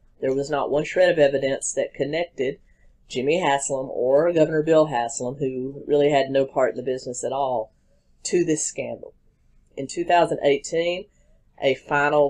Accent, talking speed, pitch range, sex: American, 155 wpm, 125-155 Hz, female